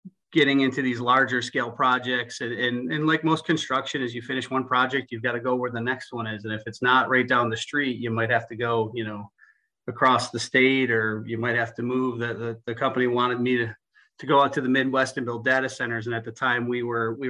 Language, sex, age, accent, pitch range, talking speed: English, male, 30-49, American, 115-135 Hz, 255 wpm